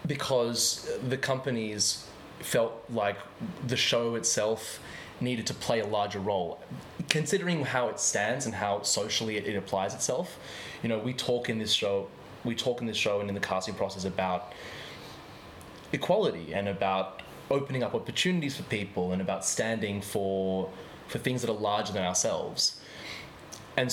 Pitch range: 100-125 Hz